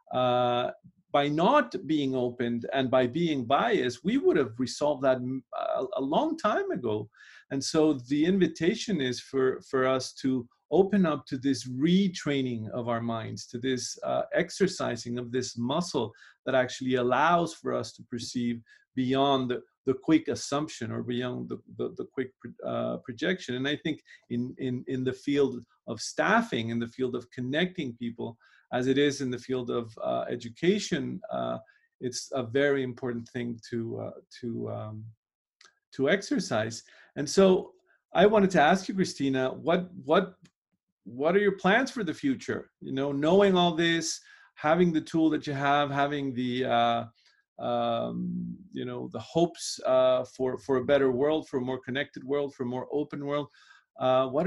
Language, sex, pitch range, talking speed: English, male, 125-170 Hz, 170 wpm